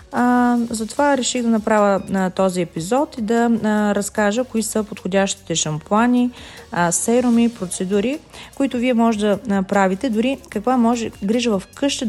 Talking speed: 150 wpm